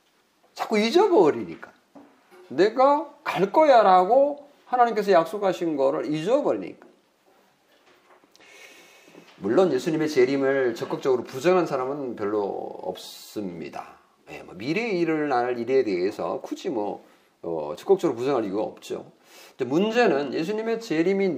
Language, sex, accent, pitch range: Korean, male, native, 150-230 Hz